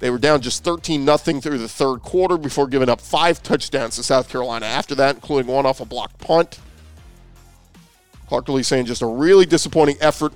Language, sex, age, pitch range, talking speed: English, male, 40-59, 120-155 Hz, 190 wpm